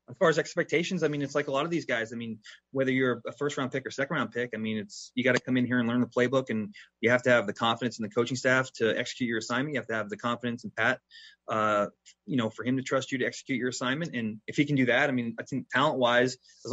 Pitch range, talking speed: 110-130 Hz, 300 wpm